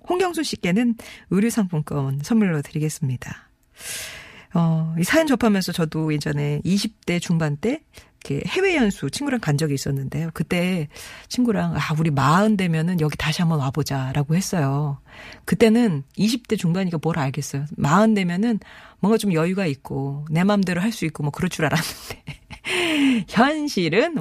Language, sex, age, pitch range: Korean, female, 40-59, 150-215 Hz